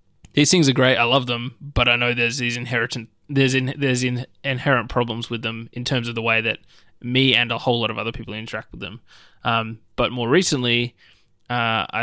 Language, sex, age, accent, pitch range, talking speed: English, male, 20-39, Australian, 115-130 Hz, 215 wpm